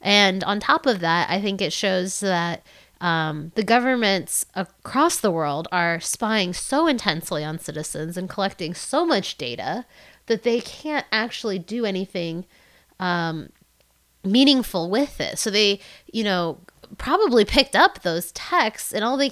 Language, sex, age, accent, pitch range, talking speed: English, female, 20-39, American, 165-210 Hz, 150 wpm